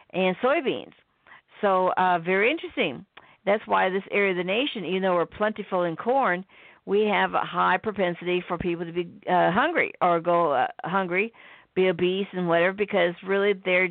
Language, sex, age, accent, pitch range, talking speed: English, female, 50-69, American, 170-200 Hz, 175 wpm